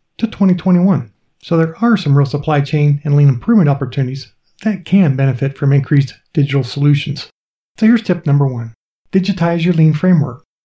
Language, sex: English, male